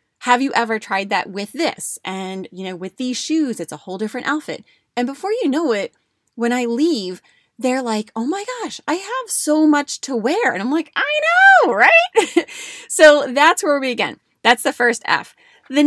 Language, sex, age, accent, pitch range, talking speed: English, female, 20-39, American, 195-285 Hz, 200 wpm